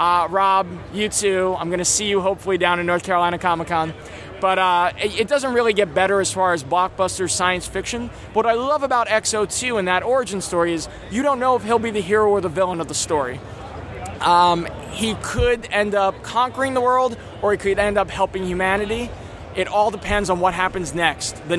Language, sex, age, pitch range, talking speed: English, male, 20-39, 180-230 Hz, 210 wpm